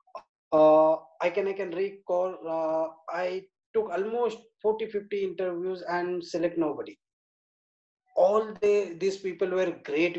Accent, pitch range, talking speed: Indian, 165-215 Hz, 130 wpm